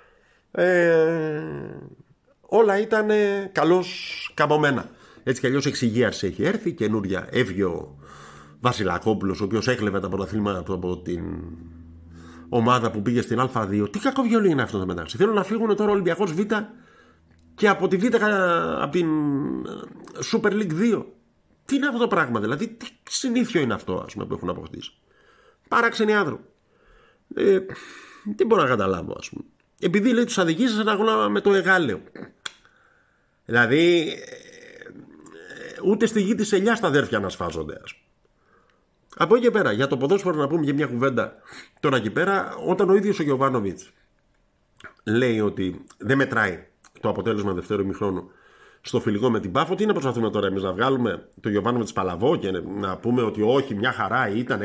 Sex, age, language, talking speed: male, 50-69, Greek, 185 wpm